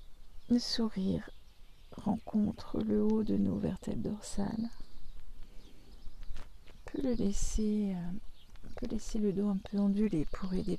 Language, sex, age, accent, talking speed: French, female, 50-69, French, 130 wpm